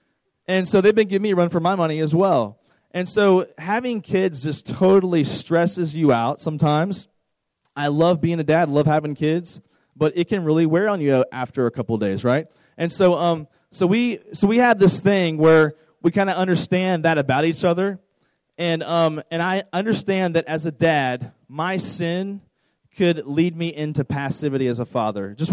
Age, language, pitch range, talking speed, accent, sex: 30-49, English, 145-175 Hz, 195 wpm, American, male